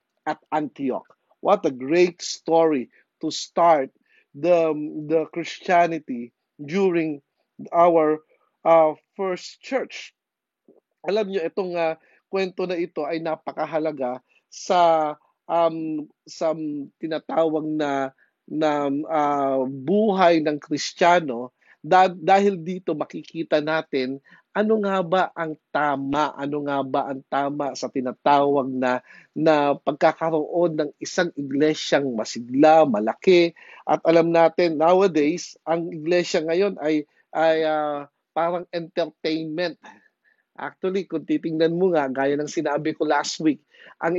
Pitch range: 150-170 Hz